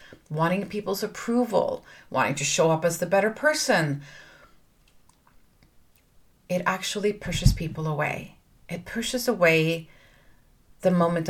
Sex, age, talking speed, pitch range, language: female, 30-49, 110 wpm, 150-180 Hz, English